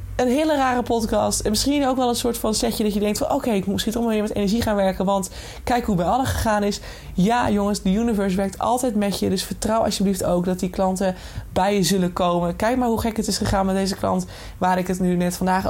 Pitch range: 175-225 Hz